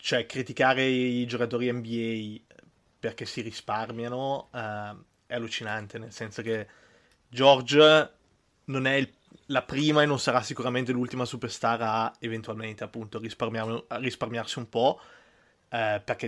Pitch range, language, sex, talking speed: 115-125 Hz, Italian, male, 130 wpm